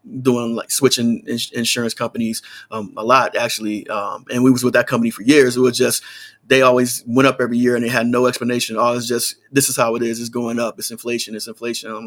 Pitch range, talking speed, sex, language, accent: 115-130 Hz, 240 wpm, male, English, American